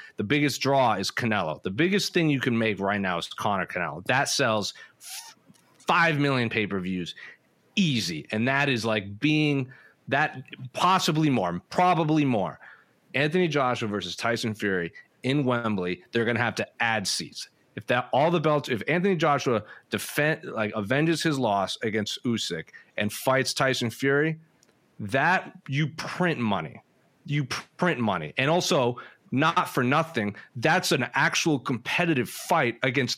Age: 30-49